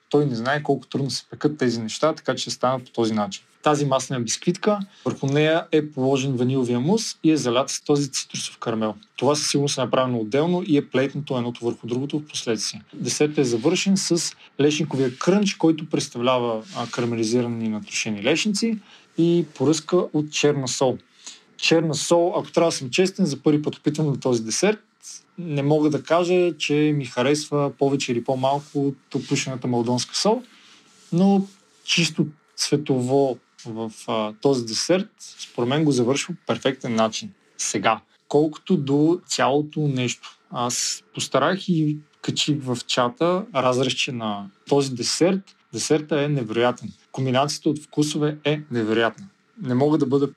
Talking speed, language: 155 wpm, Bulgarian